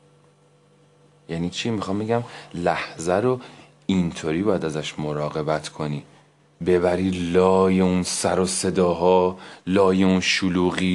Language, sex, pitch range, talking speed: Persian, male, 90-145 Hz, 110 wpm